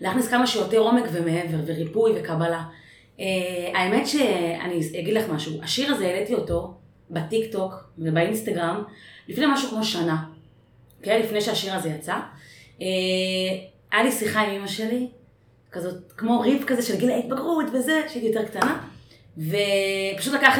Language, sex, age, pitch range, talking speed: Hebrew, female, 20-39, 180-260 Hz, 140 wpm